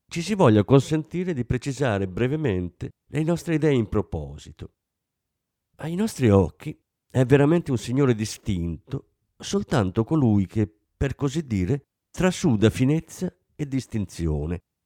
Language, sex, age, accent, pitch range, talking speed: Italian, male, 50-69, native, 105-145 Hz, 120 wpm